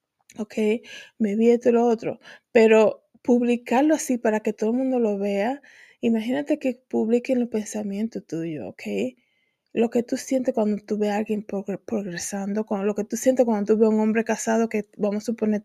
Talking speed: 190 wpm